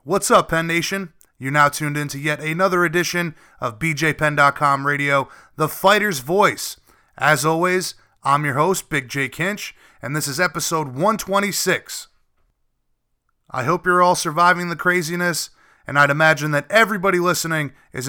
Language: English